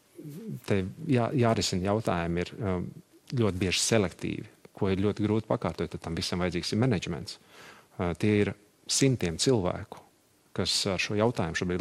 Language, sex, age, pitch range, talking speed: English, male, 40-59, 90-110 Hz, 135 wpm